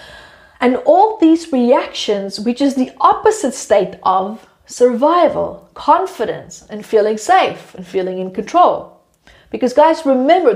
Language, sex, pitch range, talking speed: English, female, 215-305 Hz, 125 wpm